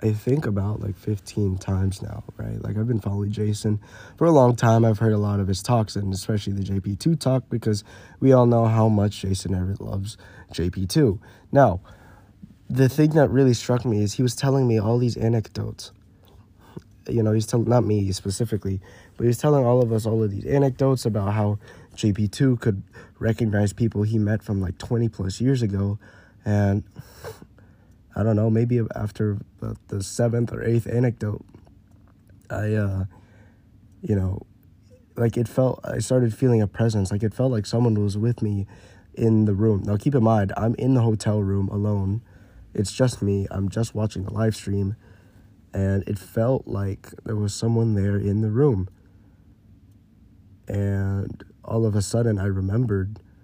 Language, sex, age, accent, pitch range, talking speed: English, male, 20-39, American, 100-115 Hz, 175 wpm